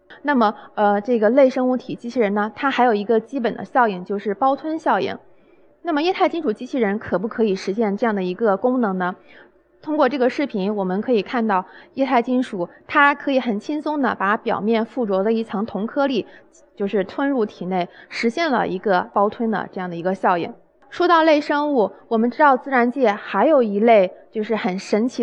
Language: Chinese